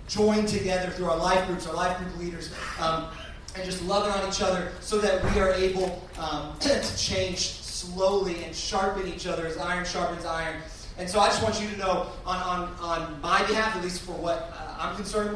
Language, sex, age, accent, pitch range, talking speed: English, male, 30-49, American, 170-200 Hz, 205 wpm